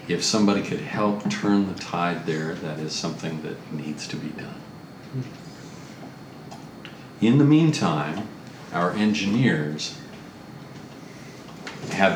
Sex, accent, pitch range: male, American, 85-110 Hz